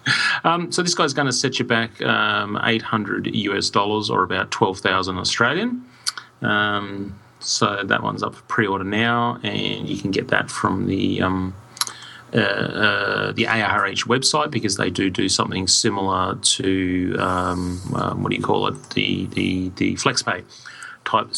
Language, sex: English, male